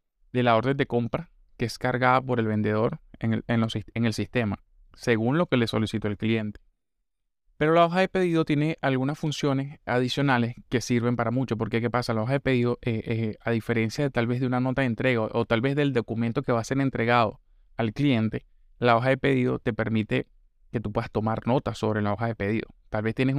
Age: 20-39